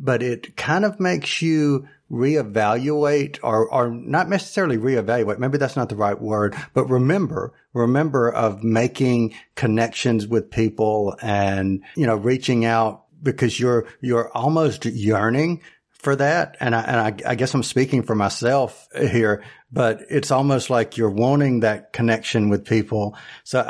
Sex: male